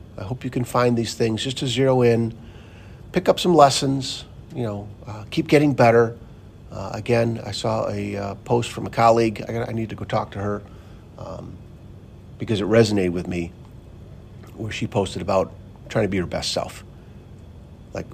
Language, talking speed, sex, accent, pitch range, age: English, 185 wpm, male, American, 95-115 Hz, 50-69